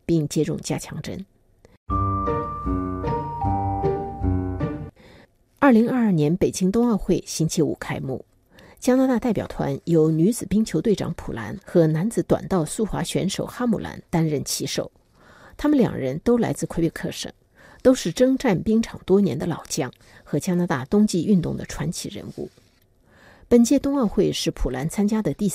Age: 50-69